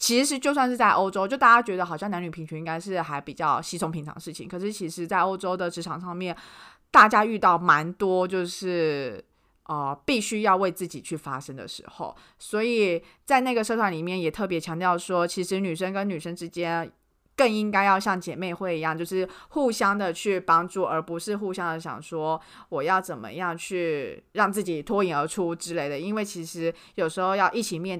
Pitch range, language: 160-195 Hz, Chinese